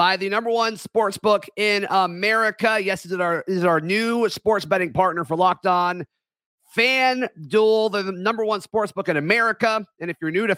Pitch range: 155-200 Hz